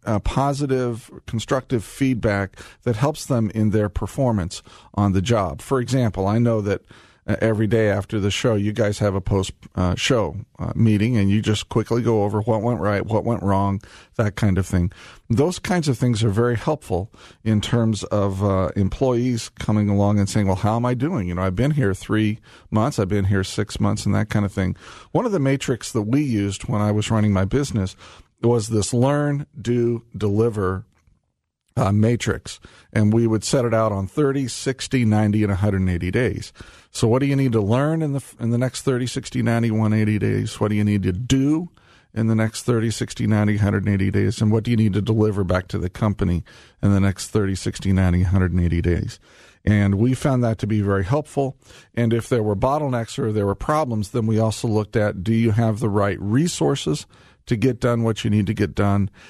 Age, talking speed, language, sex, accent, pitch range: 40-59, 205 wpm, English, male, American, 100-120 Hz